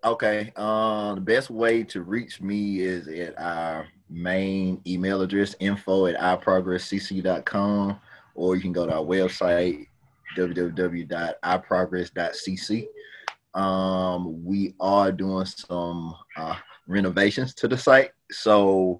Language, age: English, 30-49